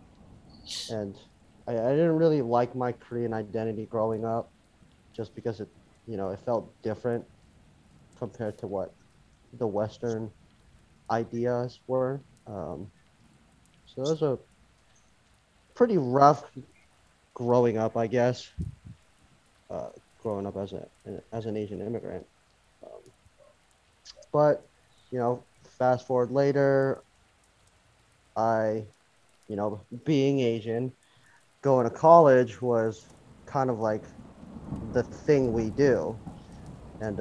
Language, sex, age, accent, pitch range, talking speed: English, male, 30-49, American, 105-125 Hz, 110 wpm